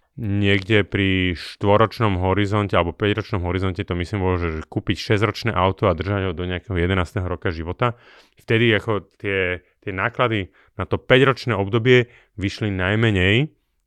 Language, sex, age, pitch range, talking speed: Slovak, male, 30-49, 95-115 Hz, 145 wpm